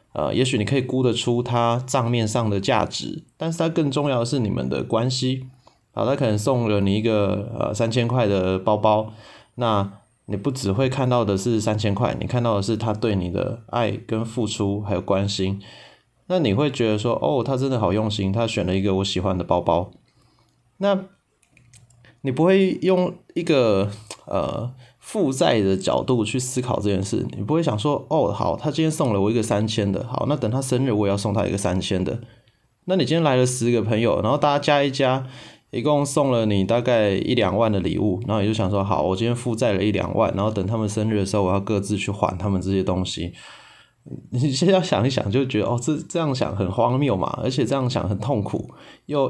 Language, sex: Chinese, male